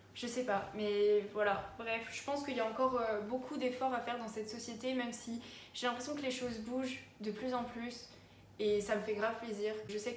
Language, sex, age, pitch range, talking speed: French, female, 20-39, 205-240 Hz, 230 wpm